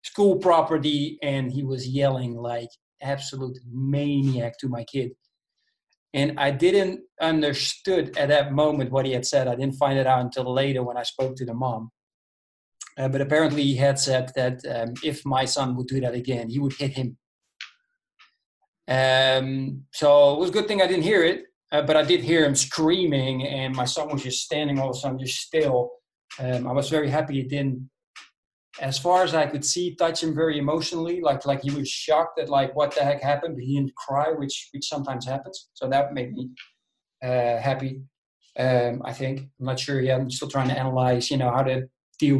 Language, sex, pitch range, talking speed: English, male, 130-160 Hz, 205 wpm